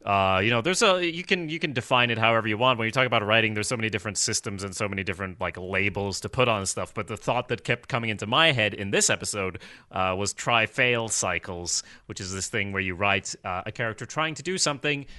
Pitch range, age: 100-120 Hz, 30-49